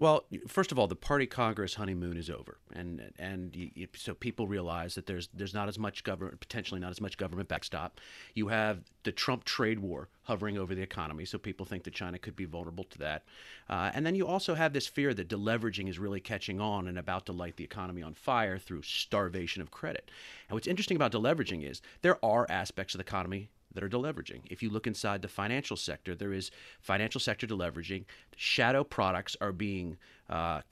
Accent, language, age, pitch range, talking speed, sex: American, English, 40-59, 95-120 Hz, 210 wpm, male